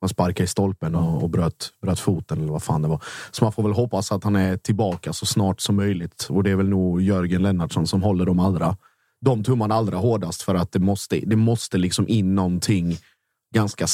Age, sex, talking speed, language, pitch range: 30-49, male, 220 wpm, Swedish, 90-105 Hz